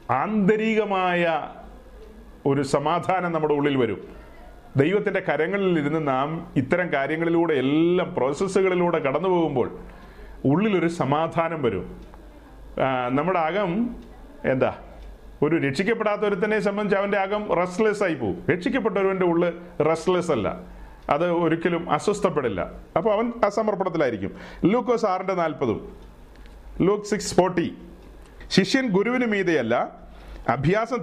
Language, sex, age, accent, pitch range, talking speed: Malayalam, male, 30-49, native, 165-215 Hz, 90 wpm